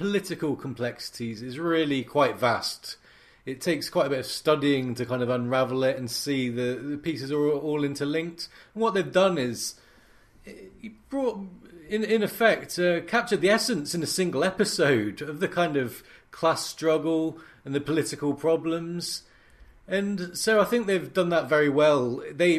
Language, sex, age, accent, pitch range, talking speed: English, male, 30-49, British, 130-170 Hz, 165 wpm